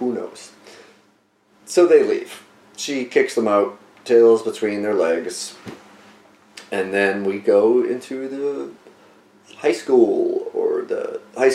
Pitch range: 105-165 Hz